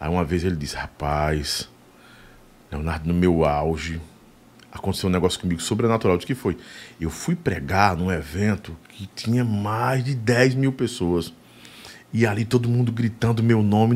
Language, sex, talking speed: Portuguese, male, 160 wpm